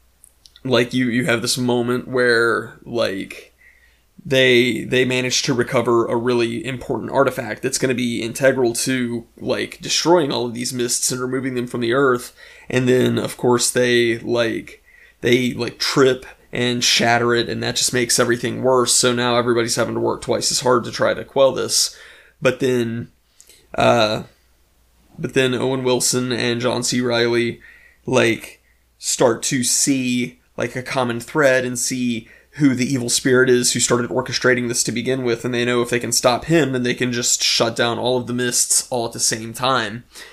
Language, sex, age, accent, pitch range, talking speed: English, male, 20-39, American, 115-130 Hz, 180 wpm